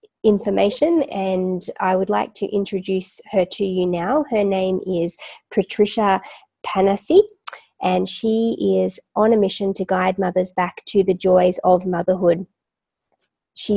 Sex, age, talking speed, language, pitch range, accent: female, 20-39, 140 wpm, English, 175-205 Hz, Australian